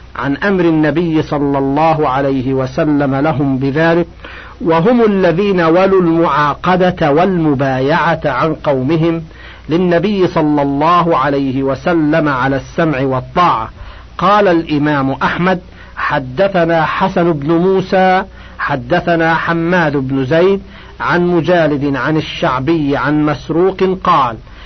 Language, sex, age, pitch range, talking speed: Arabic, male, 50-69, 145-175 Hz, 100 wpm